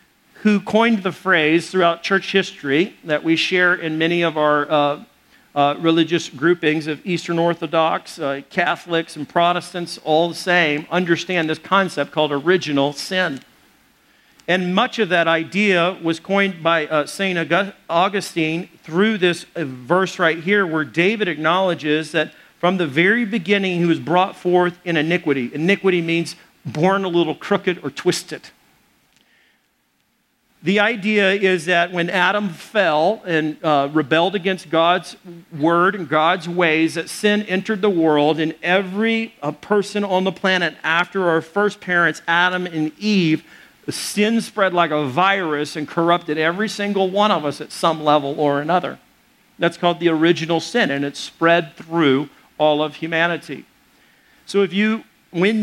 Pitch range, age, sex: 160-190 Hz, 50-69, male